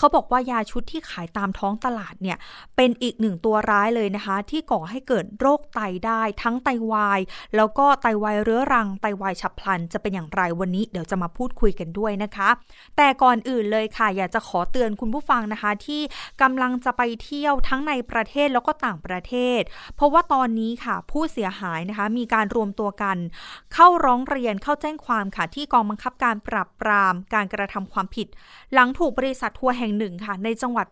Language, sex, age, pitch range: Thai, female, 20-39, 205-260 Hz